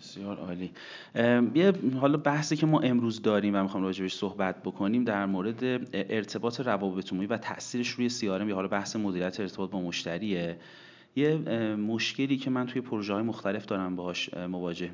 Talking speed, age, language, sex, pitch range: 160 wpm, 30-49, Persian, male, 95-120 Hz